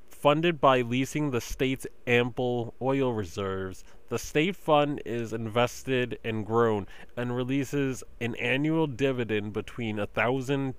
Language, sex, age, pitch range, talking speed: English, male, 30-49, 105-130 Hz, 120 wpm